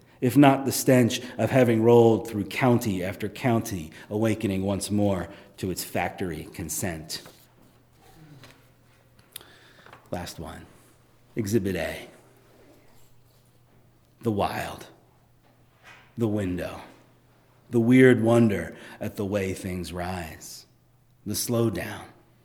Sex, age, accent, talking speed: male, 40-59, American, 95 wpm